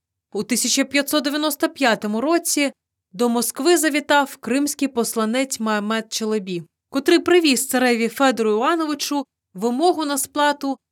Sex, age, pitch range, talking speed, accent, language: female, 20-39, 195-280 Hz, 100 wpm, native, Ukrainian